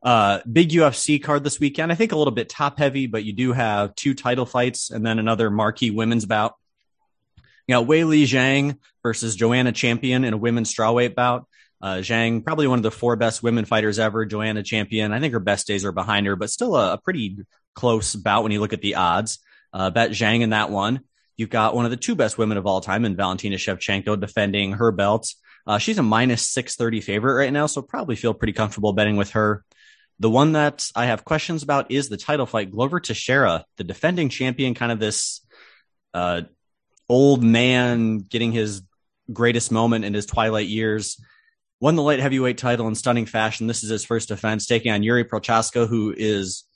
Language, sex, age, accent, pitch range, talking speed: English, male, 30-49, American, 105-125 Hz, 210 wpm